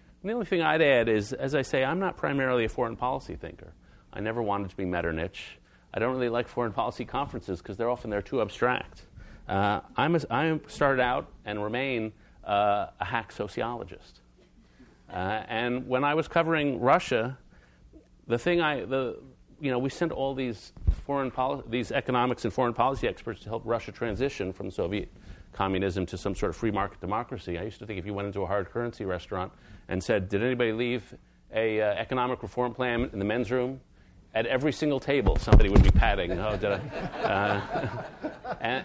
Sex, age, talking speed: male, 40-59, 195 wpm